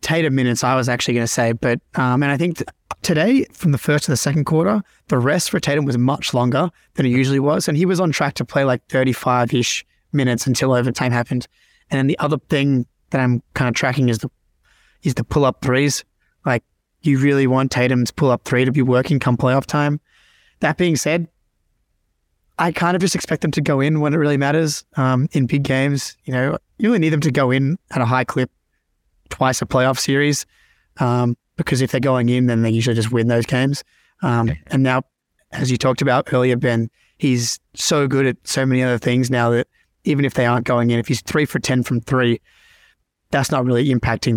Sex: male